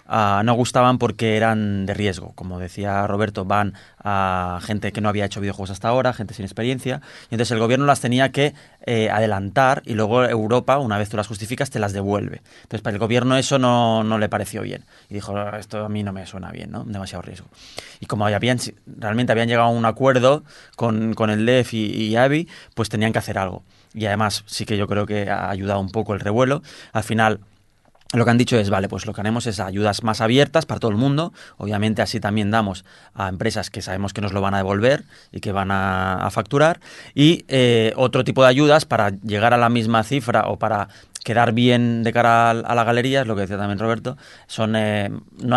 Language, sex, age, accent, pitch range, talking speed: Spanish, male, 20-39, Spanish, 100-120 Hz, 225 wpm